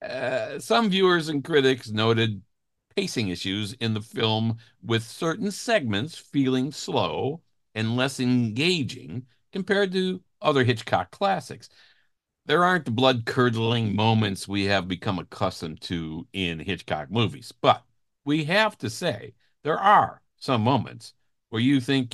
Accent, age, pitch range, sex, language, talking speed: American, 60-79, 110-150 Hz, male, English, 130 wpm